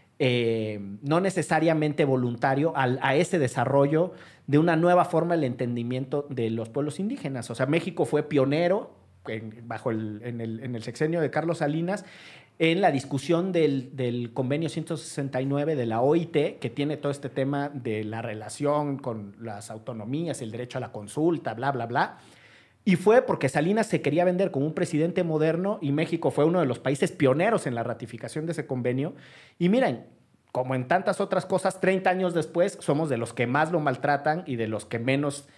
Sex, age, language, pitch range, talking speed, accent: male, 40-59, Spanish, 125-170 Hz, 185 wpm, Mexican